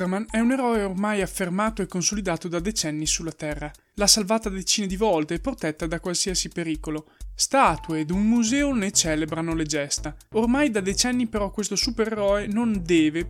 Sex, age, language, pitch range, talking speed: male, 20-39, Italian, 170-235 Hz, 170 wpm